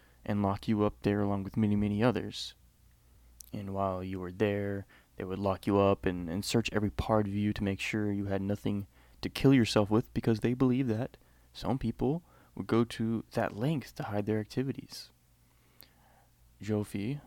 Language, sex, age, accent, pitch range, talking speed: English, male, 20-39, American, 95-115 Hz, 185 wpm